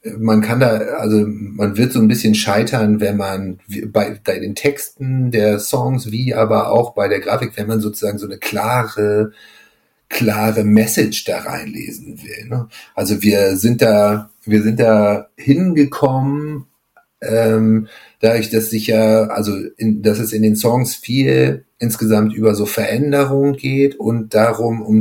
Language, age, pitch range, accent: German, 40-59, 105-115 Hz, German